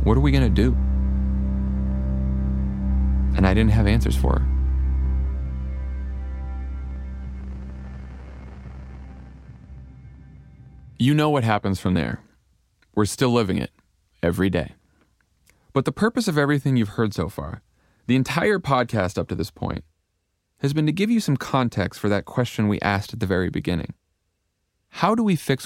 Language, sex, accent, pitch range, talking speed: English, male, American, 80-130 Hz, 145 wpm